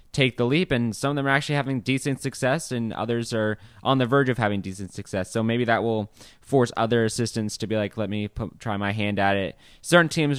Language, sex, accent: English, male, American